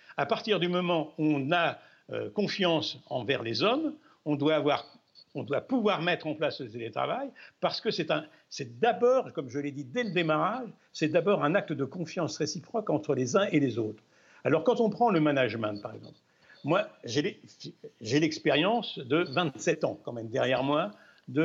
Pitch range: 150-210 Hz